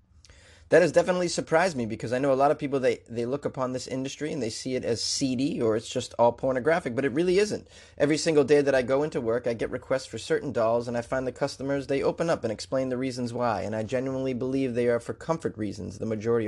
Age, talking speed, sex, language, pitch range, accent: 30-49, 260 wpm, male, English, 90-130 Hz, American